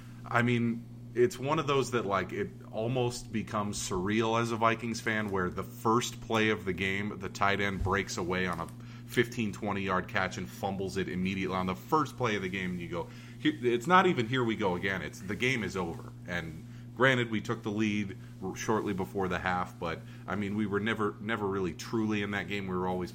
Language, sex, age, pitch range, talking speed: English, male, 30-49, 85-120 Hz, 215 wpm